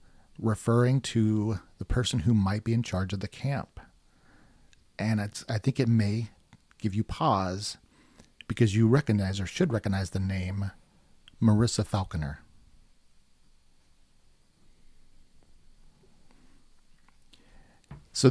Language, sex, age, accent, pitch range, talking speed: English, male, 40-59, American, 95-120 Hz, 105 wpm